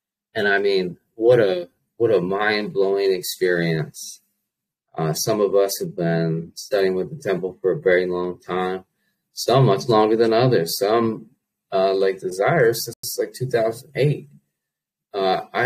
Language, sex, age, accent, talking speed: English, male, 20-39, American, 140 wpm